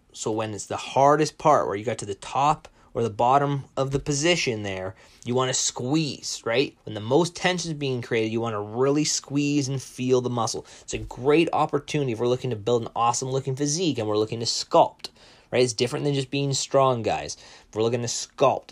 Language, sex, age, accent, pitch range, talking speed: English, male, 20-39, American, 110-135 Hz, 230 wpm